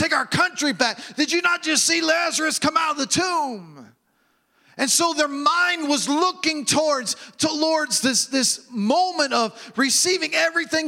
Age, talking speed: 40-59, 165 wpm